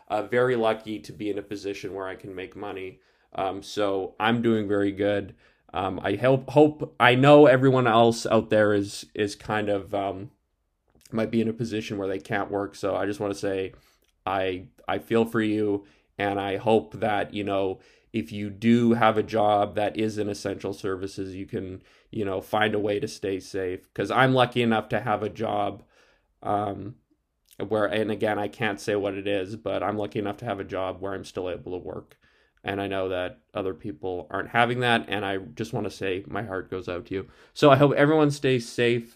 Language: English